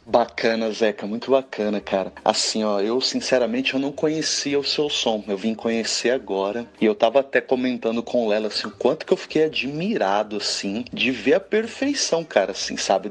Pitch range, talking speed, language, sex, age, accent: 110-160 Hz, 190 wpm, Portuguese, male, 30-49, Brazilian